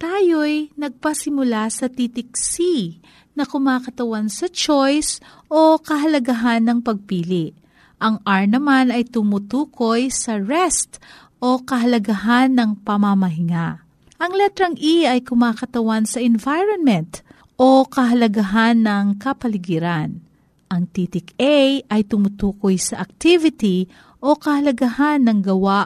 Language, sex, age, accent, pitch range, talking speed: Filipino, female, 40-59, native, 200-275 Hz, 105 wpm